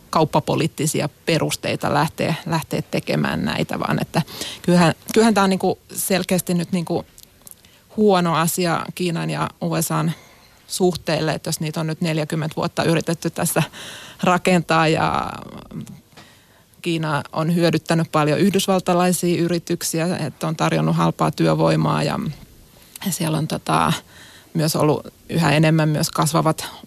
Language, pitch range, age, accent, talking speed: Finnish, 155-175 Hz, 30-49, native, 120 wpm